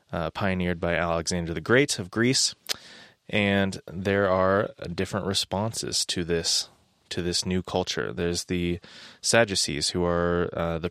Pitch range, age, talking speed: 85-100 Hz, 20-39, 145 wpm